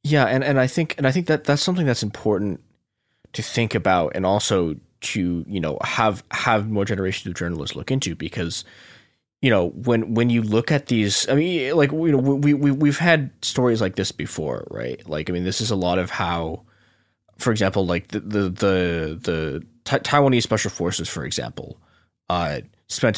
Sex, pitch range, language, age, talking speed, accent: male, 90-120 Hz, English, 20-39, 195 wpm, American